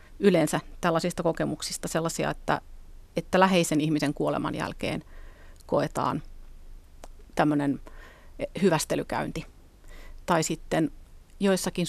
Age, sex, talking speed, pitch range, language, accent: 30-49, female, 80 wpm, 150-180 Hz, Finnish, native